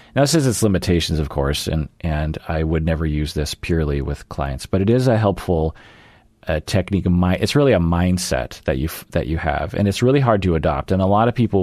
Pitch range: 85-105 Hz